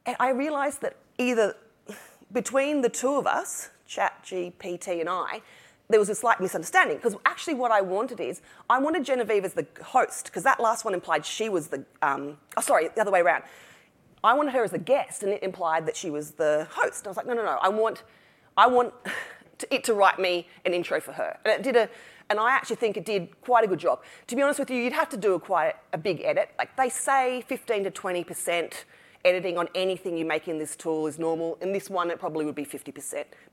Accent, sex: Australian, female